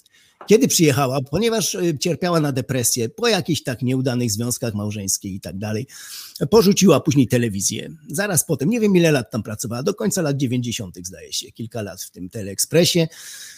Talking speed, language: 165 wpm, Polish